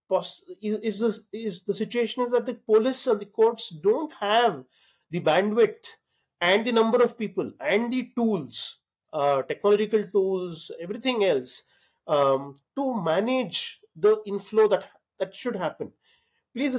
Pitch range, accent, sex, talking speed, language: 170-225 Hz, Indian, male, 145 wpm, English